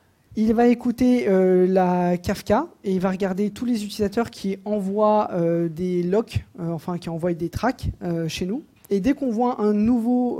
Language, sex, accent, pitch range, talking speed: English, male, French, 175-215 Hz, 190 wpm